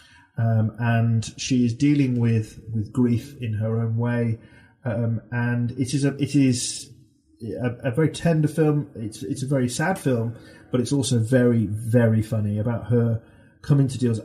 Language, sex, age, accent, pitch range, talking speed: English, male, 30-49, British, 115-130 Hz, 175 wpm